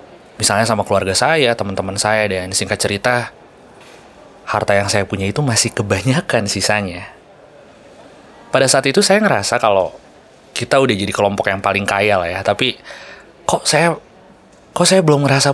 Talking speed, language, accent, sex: 150 wpm, Indonesian, native, male